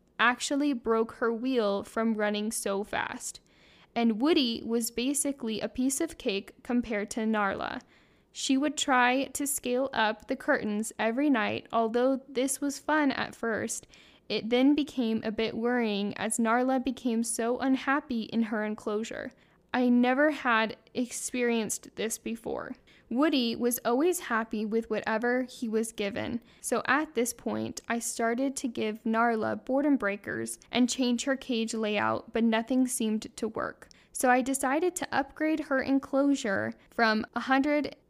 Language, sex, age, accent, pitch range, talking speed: English, female, 10-29, American, 220-265 Hz, 150 wpm